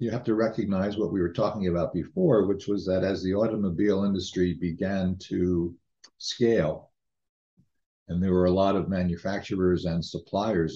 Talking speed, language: 160 wpm, English